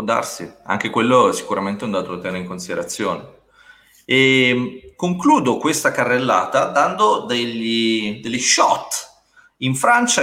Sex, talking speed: male, 130 wpm